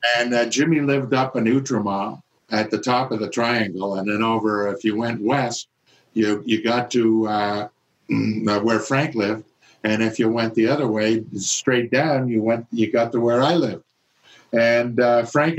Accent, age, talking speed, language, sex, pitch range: American, 50-69, 185 wpm, English, male, 105-125 Hz